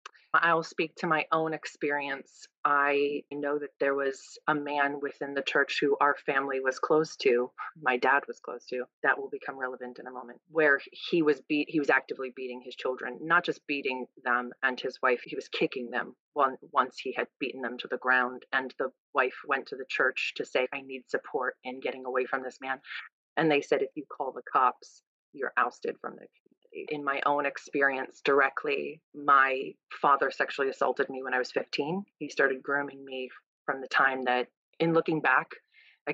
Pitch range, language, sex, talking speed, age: 130-165 Hz, English, female, 200 wpm, 30-49